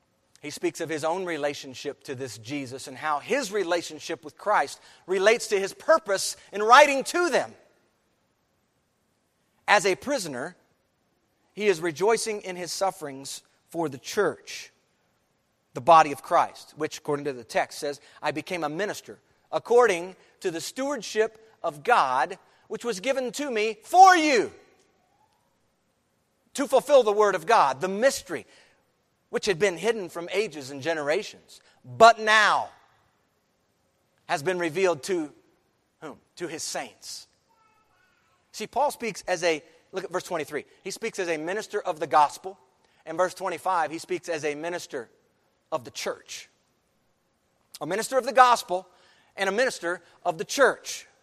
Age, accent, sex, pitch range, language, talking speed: 40-59, American, male, 165-235 Hz, English, 150 wpm